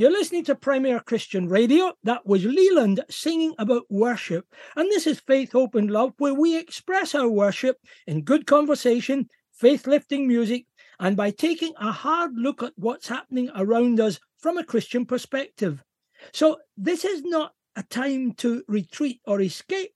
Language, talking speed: English, 160 wpm